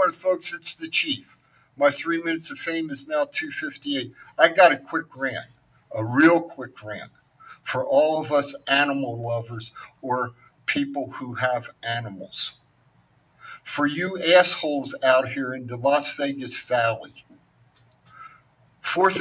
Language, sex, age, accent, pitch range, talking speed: English, male, 50-69, American, 130-160 Hz, 135 wpm